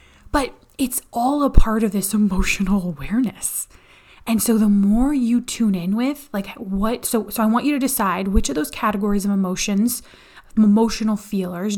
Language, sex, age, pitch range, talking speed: English, female, 20-39, 195-235 Hz, 175 wpm